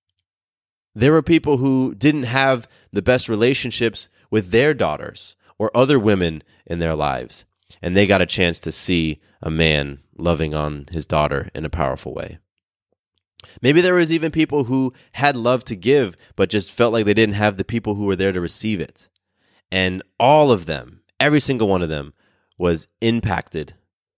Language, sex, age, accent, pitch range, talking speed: English, male, 20-39, American, 85-115 Hz, 175 wpm